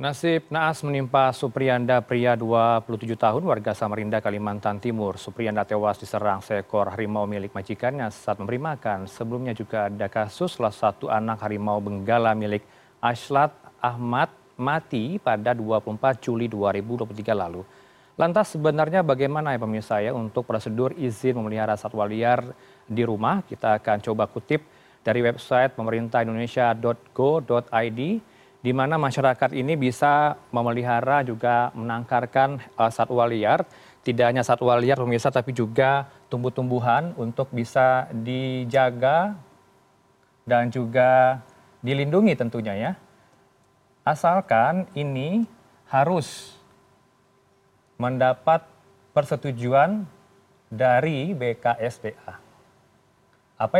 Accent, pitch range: native, 115-135 Hz